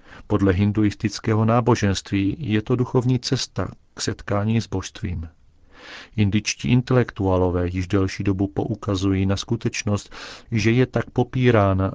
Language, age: Czech, 40-59